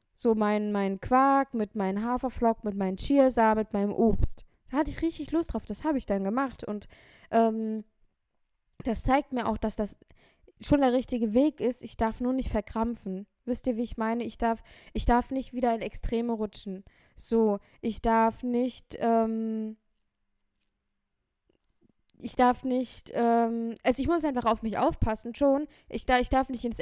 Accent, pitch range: German, 215-255 Hz